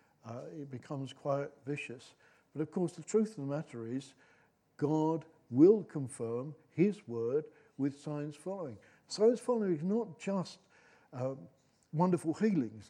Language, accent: English, British